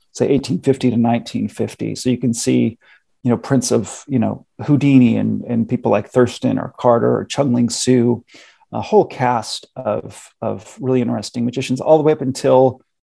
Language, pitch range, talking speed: English, 115-130 Hz, 180 wpm